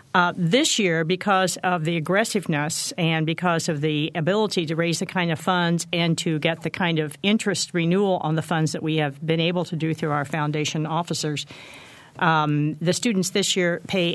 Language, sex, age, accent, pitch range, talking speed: English, female, 50-69, American, 155-185 Hz, 195 wpm